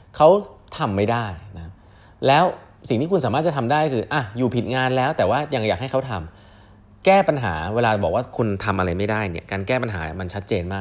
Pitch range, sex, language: 95-125 Hz, male, Thai